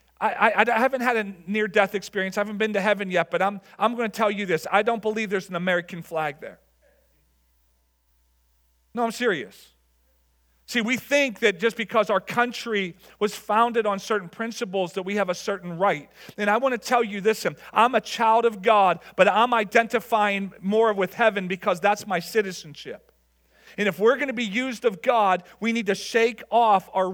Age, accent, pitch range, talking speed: 40-59, American, 180-225 Hz, 195 wpm